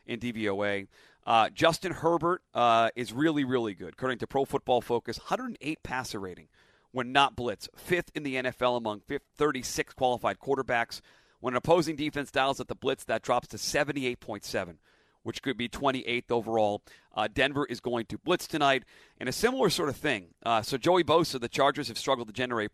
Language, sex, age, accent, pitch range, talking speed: English, male, 40-59, American, 115-140 Hz, 180 wpm